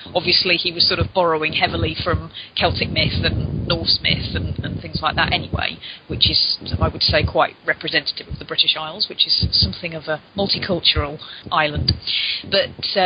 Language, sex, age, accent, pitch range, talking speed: English, female, 30-49, British, 160-190 Hz, 175 wpm